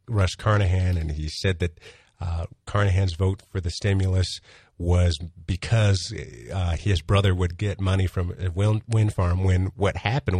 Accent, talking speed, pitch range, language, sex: American, 155 wpm, 95-105 Hz, English, male